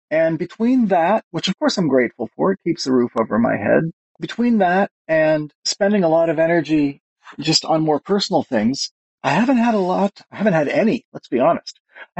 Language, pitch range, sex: English, 130-195 Hz, male